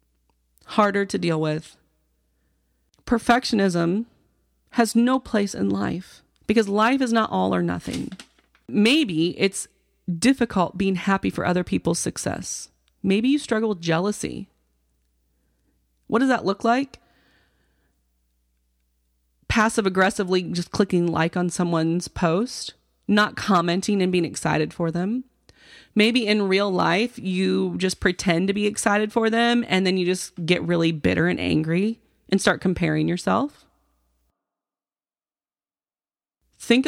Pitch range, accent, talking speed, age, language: 155-220 Hz, American, 125 wpm, 30-49, English